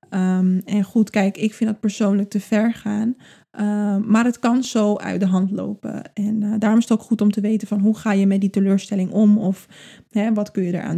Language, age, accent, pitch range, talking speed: Dutch, 20-39, Dutch, 200-225 Hz, 230 wpm